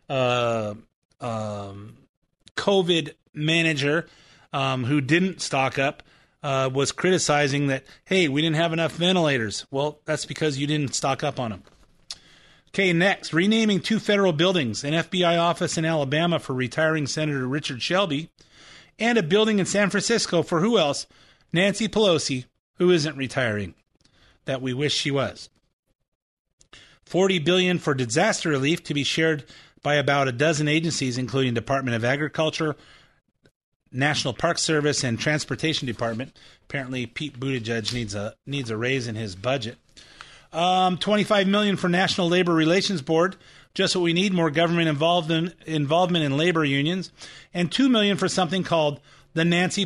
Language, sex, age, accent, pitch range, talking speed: English, male, 30-49, American, 135-175 Hz, 150 wpm